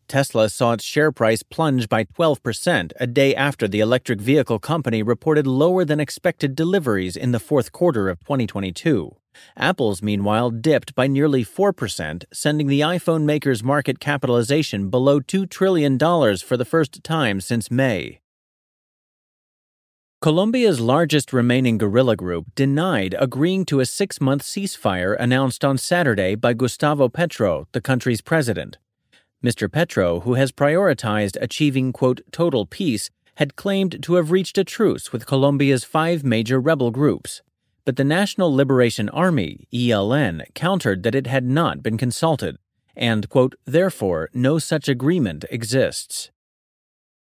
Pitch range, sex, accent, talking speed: 120-155 Hz, male, American, 135 wpm